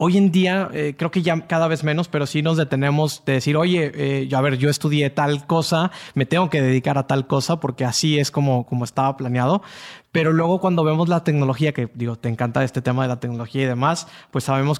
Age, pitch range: 20-39, 135-160 Hz